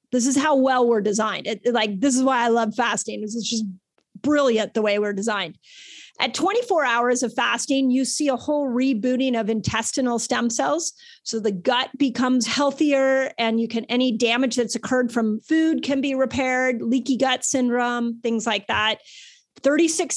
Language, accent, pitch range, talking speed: English, American, 225-270 Hz, 180 wpm